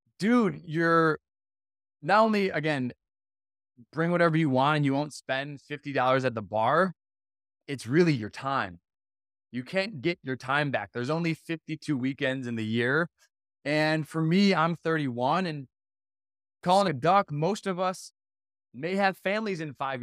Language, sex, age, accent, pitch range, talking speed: English, male, 20-39, American, 120-160 Hz, 155 wpm